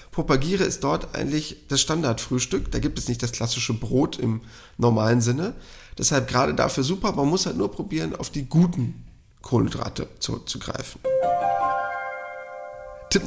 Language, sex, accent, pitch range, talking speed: German, male, German, 125-170 Hz, 140 wpm